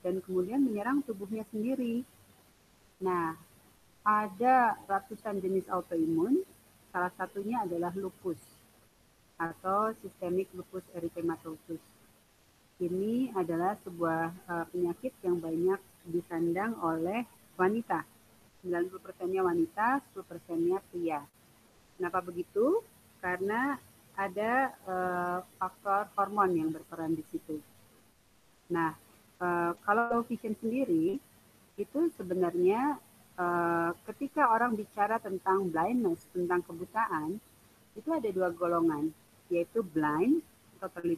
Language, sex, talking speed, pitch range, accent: Indonesian, female, 100 wpm, 175-230 Hz, native